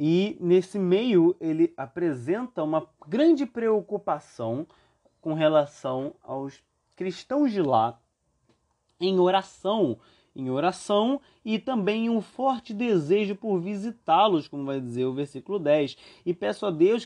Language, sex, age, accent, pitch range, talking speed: Portuguese, male, 20-39, Brazilian, 130-190 Hz, 125 wpm